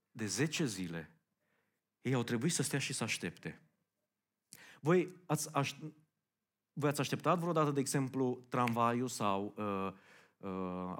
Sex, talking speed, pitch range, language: male, 130 wpm, 120-160 Hz, Romanian